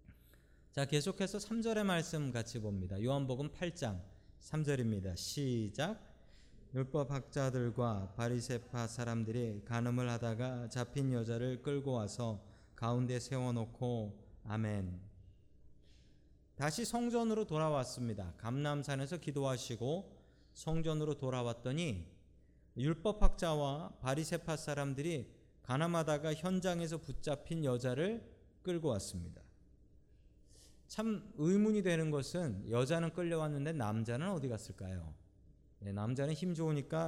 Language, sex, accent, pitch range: Korean, male, native, 110-160 Hz